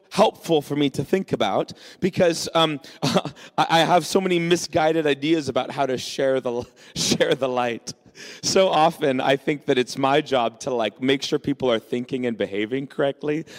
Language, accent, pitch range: English, American, 135-180 Hz